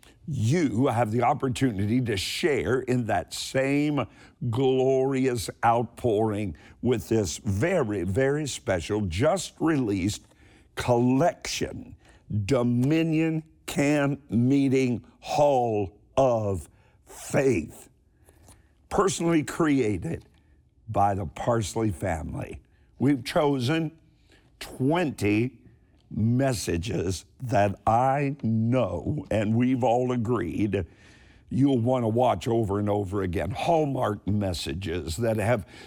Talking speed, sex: 90 wpm, male